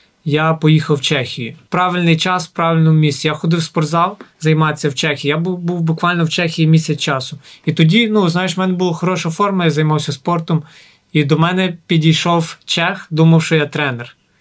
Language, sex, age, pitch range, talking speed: Ukrainian, male, 20-39, 155-190 Hz, 190 wpm